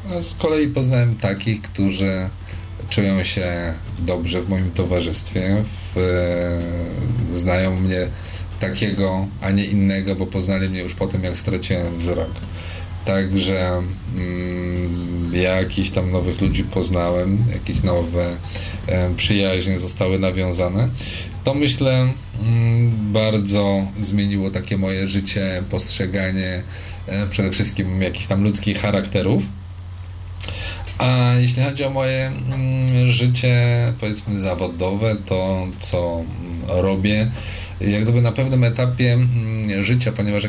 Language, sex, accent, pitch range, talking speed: Polish, male, native, 90-105 Hz, 115 wpm